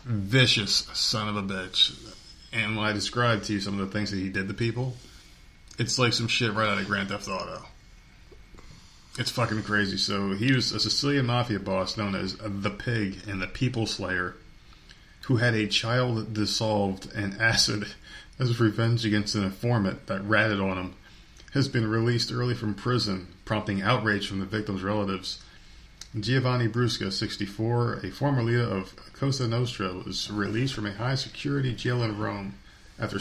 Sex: male